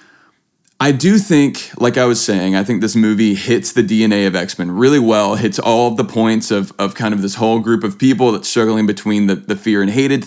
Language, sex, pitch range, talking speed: English, male, 95-120 Hz, 235 wpm